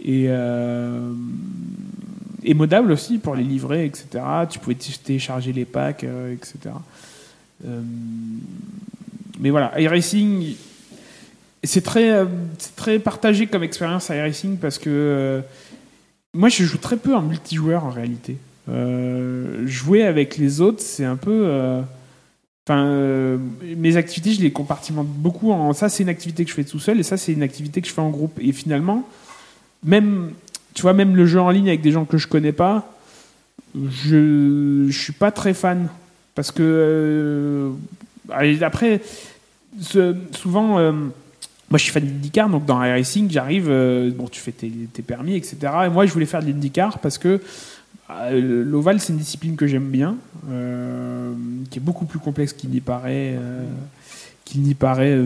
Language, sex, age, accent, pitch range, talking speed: French, male, 30-49, French, 135-185 Hz, 165 wpm